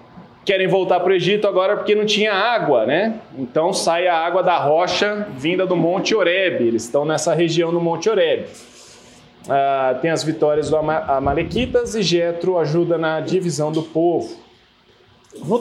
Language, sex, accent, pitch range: Portuguese, male, Brazilian, 160-205 Hz